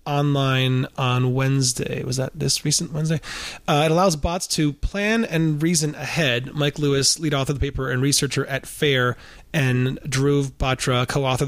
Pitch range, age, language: 130-155 Hz, 30-49, English